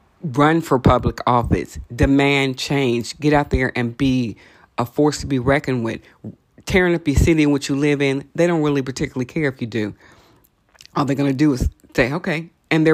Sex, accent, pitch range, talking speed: female, American, 120-145 Hz, 205 wpm